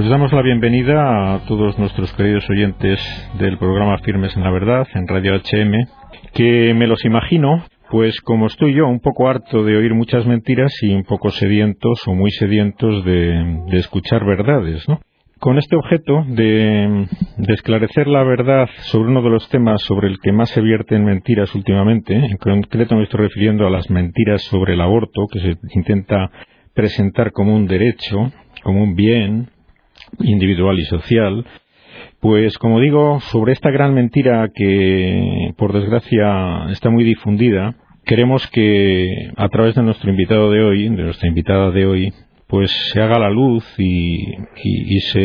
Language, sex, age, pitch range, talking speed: Spanish, male, 50-69, 95-120 Hz, 165 wpm